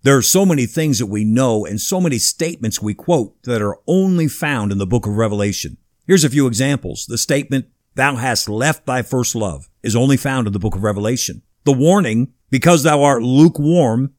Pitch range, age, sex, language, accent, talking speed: 120-165 Hz, 50-69, male, English, American, 205 wpm